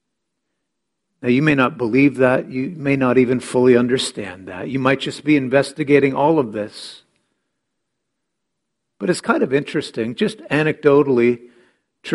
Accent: American